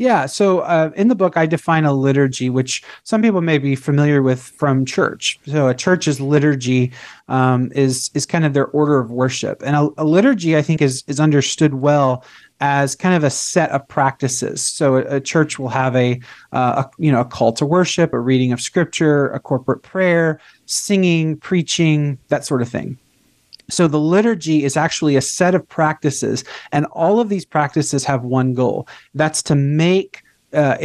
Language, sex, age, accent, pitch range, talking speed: English, male, 30-49, American, 135-160 Hz, 190 wpm